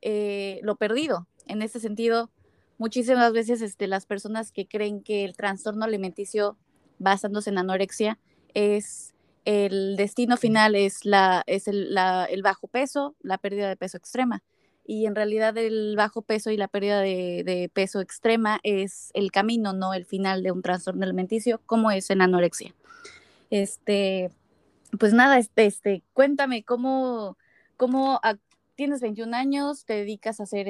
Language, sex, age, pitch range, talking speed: Spanish, female, 20-39, 195-235 Hz, 155 wpm